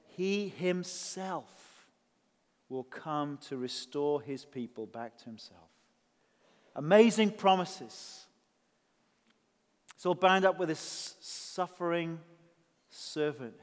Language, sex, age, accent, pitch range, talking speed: English, male, 40-59, British, 160-210 Hz, 95 wpm